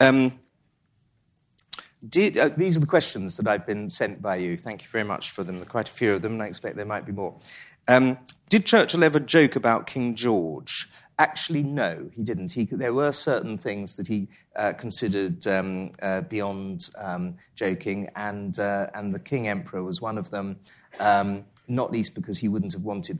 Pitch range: 95-125 Hz